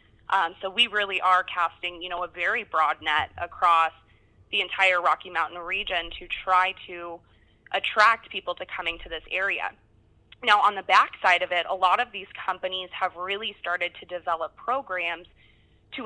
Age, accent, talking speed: 20-39, American, 170 wpm